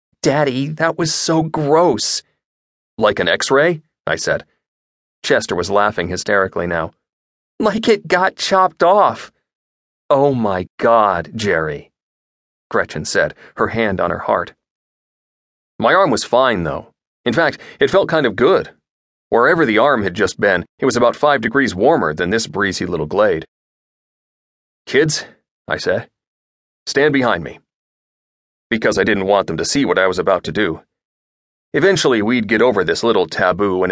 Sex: male